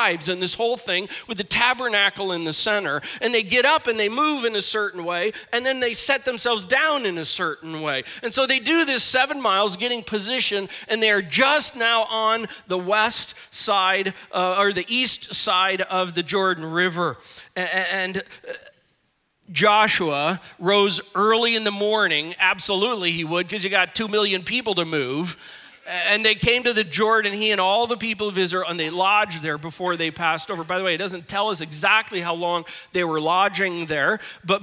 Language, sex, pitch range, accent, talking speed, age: English, male, 180-220 Hz, American, 190 wpm, 40-59